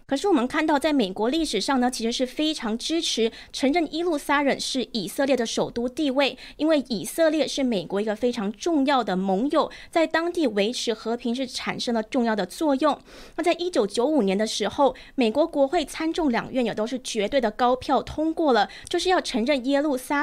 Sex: female